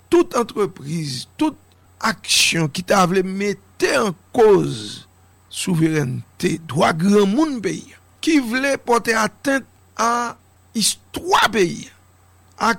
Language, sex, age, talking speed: English, male, 60-79, 105 wpm